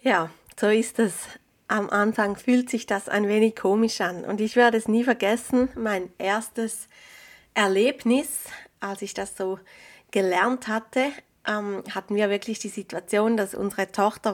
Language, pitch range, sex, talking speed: German, 200-245 Hz, female, 150 wpm